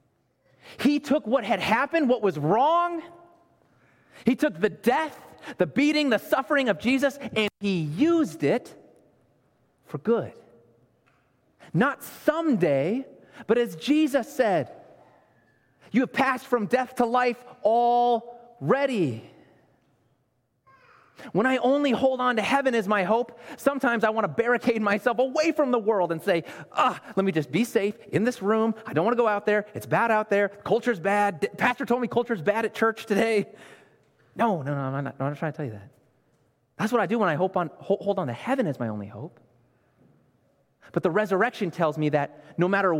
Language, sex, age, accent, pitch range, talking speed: English, male, 30-49, American, 160-250 Hz, 175 wpm